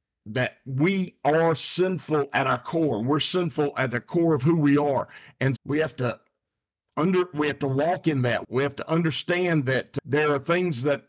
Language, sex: English, male